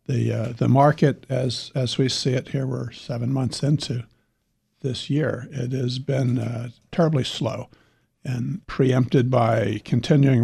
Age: 60-79